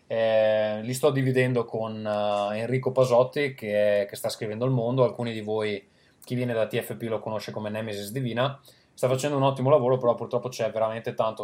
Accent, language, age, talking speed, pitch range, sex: native, Italian, 20-39, 185 wpm, 105-130 Hz, male